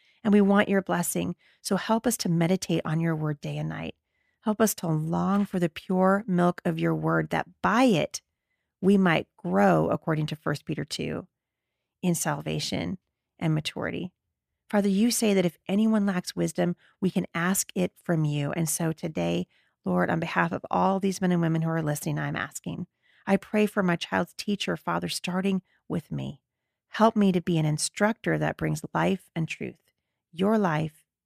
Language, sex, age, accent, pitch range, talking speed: English, female, 40-59, American, 155-195 Hz, 185 wpm